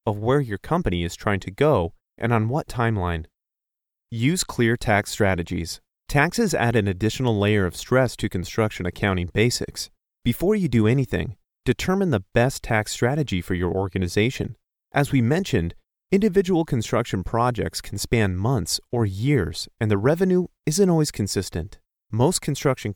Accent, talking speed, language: American, 150 wpm, English